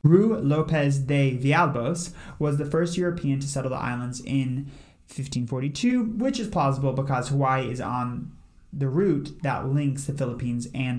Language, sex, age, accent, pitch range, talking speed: English, male, 30-49, American, 125-155 Hz, 155 wpm